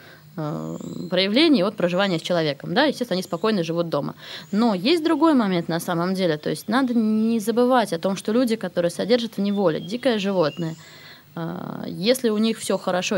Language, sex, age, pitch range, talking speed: Russian, female, 20-39, 170-225 Hz, 175 wpm